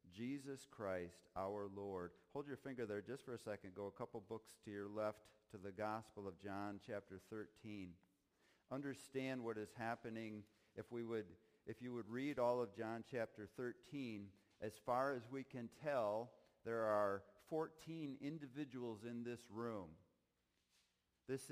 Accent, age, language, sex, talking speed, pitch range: American, 50-69, English, male, 155 wpm, 105-130 Hz